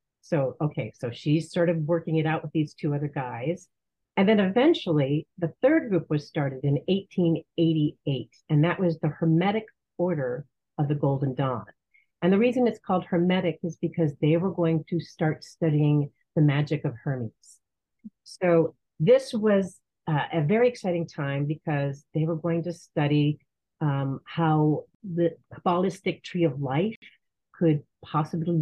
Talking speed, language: 155 wpm, English